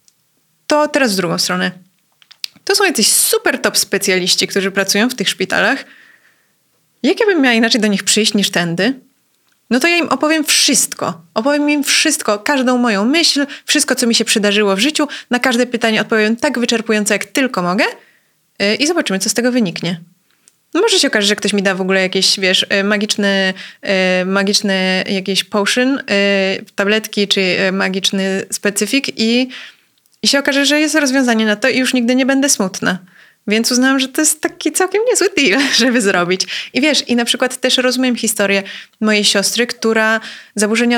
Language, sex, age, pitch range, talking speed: Polish, female, 20-39, 200-250 Hz, 170 wpm